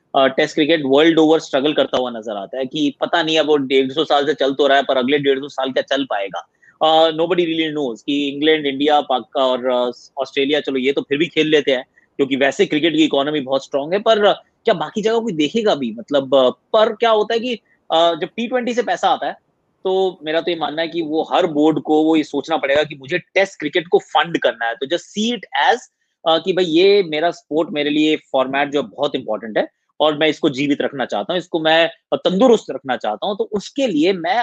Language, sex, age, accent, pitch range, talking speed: English, male, 20-39, Indian, 145-205 Hz, 125 wpm